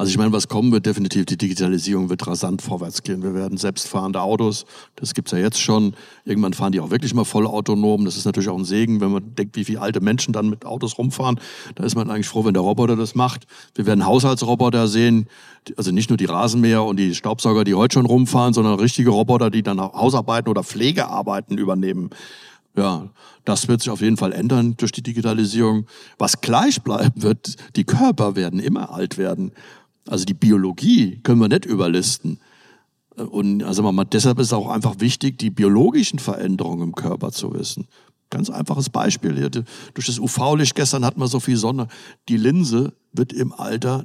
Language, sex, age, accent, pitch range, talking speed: German, male, 60-79, German, 100-125 Hz, 195 wpm